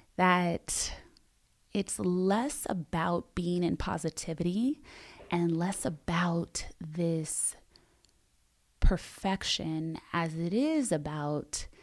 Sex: female